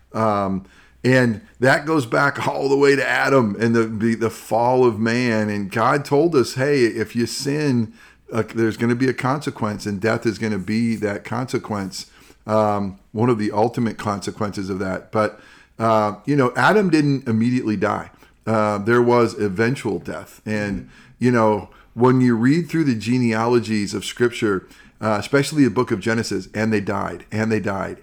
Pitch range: 105-125 Hz